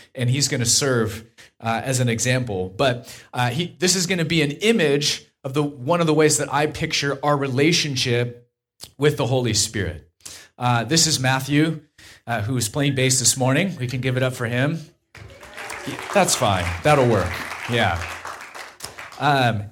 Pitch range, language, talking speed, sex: 105-155 Hz, English, 175 wpm, male